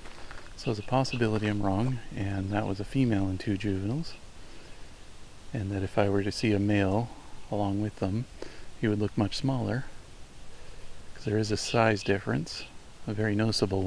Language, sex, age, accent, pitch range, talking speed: English, male, 40-59, American, 95-110 Hz, 175 wpm